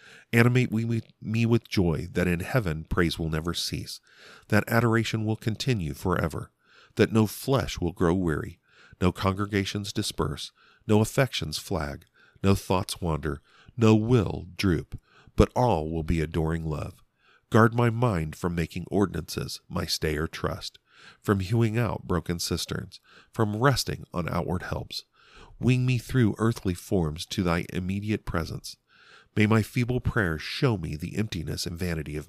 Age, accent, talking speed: 50-69, American, 150 wpm